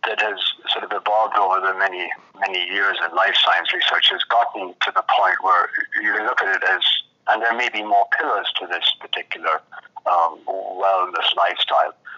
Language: English